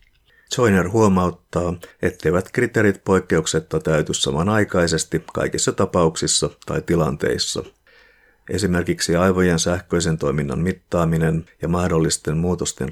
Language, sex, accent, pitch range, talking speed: Finnish, male, native, 80-95 Hz, 90 wpm